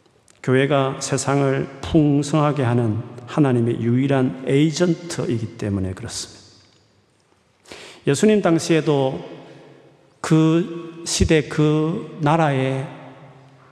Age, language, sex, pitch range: 40-59, Korean, male, 120-160 Hz